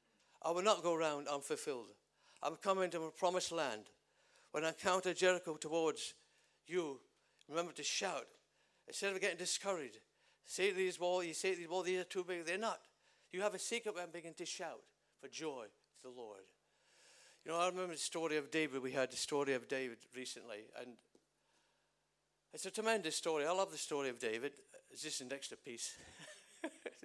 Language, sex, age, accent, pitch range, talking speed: English, male, 60-79, British, 155-210 Hz, 185 wpm